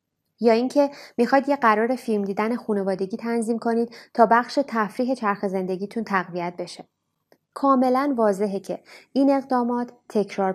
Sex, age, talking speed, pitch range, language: female, 20-39, 130 wpm, 205-240 Hz, Persian